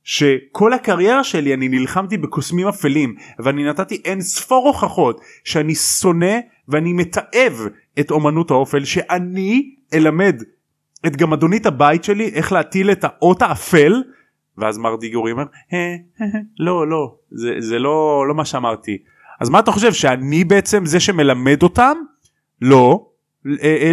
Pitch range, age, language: 135-215 Hz, 30-49, Hebrew